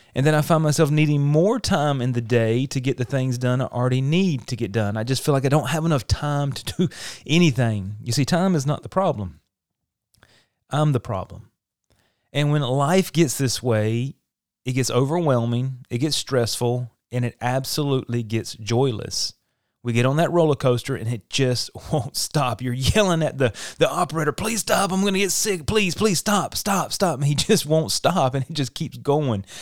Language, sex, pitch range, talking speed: English, male, 120-150 Hz, 205 wpm